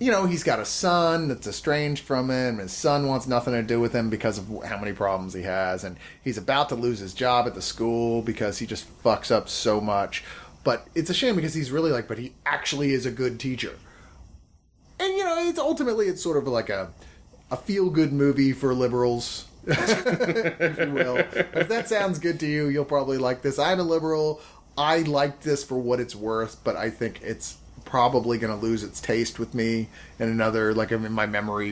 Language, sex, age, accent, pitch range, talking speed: English, male, 30-49, American, 105-140 Hz, 215 wpm